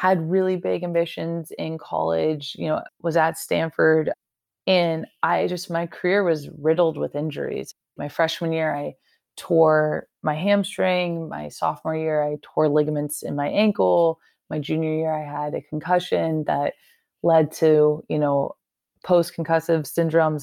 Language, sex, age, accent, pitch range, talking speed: English, female, 20-39, American, 150-185 Hz, 150 wpm